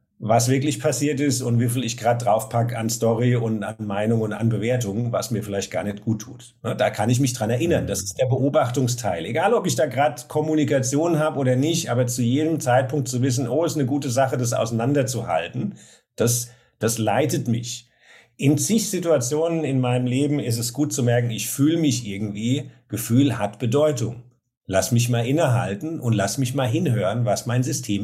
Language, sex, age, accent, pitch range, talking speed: German, male, 50-69, German, 120-150 Hz, 195 wpm